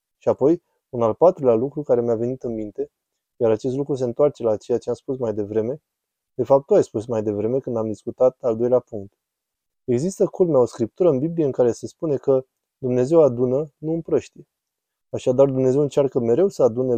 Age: 20-39